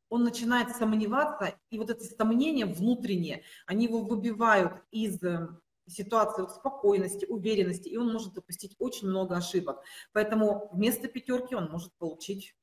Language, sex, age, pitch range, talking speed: Russian, female, 30-49, 190-245 Hz, 140 wpm